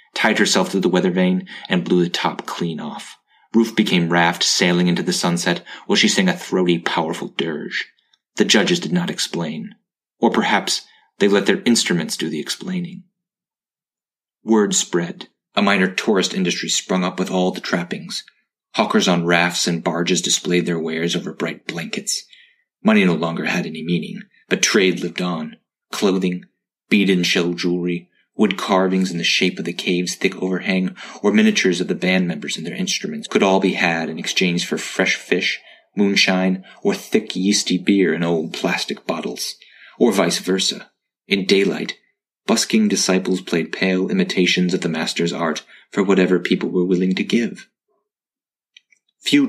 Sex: male